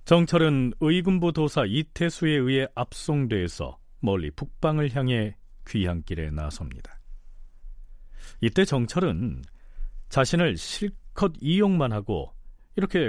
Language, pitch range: Korean, 95-150 Hz